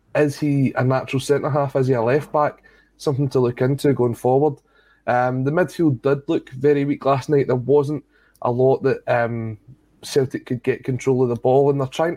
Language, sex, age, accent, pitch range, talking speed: English, male, 20-39, British, 125-145 Hz, 205 wpm